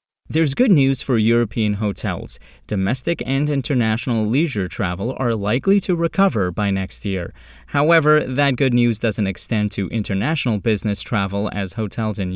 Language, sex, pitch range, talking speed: English, male, 100-140 Hz, 150 wpm